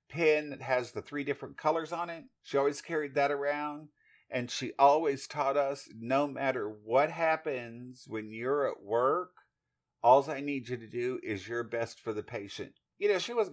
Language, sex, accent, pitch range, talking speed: English, male, American, 115-150 Hz, 190 wpm